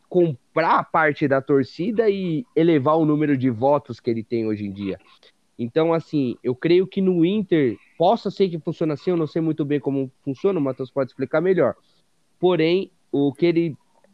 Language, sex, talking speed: Portuguese, male, 185 wpm